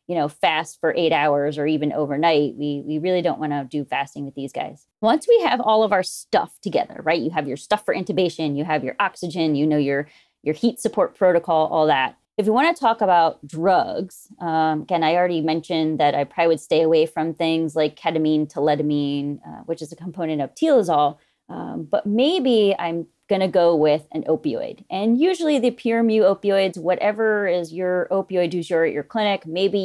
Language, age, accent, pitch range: English, 30-49, American, 160-205 Hz